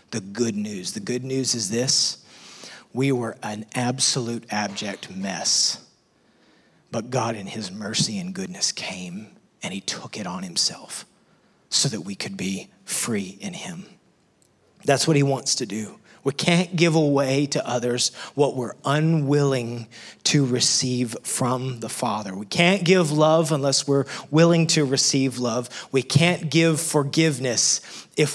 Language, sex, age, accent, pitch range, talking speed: English, male, 30-49, American, 120-155 Hz, 150 wpm